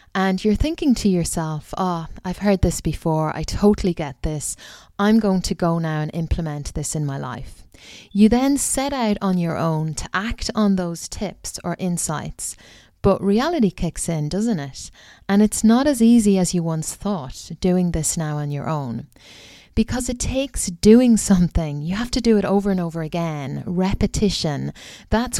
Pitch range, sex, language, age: 160-205 Hz, female, English, 30-49